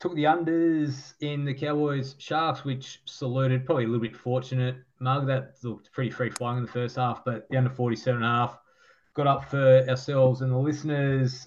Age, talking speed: 20-39, 200 wpm